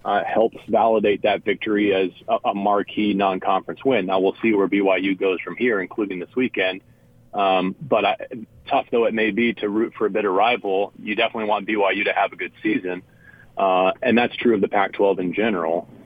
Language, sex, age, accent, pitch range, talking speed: English, male, 30-49, American, 105-125 Hz, 200 wpm